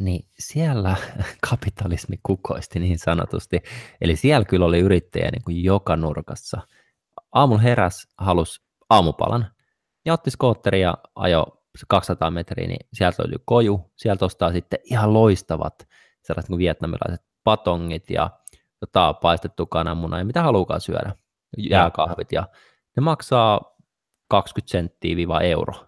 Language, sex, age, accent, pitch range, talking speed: Finnish, male, 20-39, native, 85-110 Hz, 120 wpm